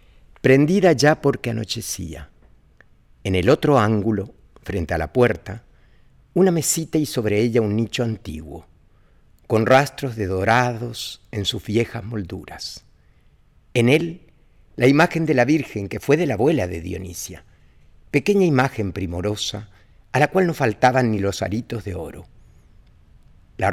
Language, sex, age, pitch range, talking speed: Spanish, male, 50-69, 100-130 Hz, 140 wpm